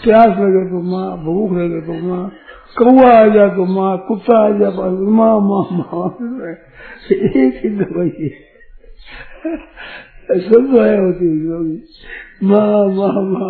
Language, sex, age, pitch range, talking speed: Hindi, male, 50-69, 165-215 Hz, 65 wpm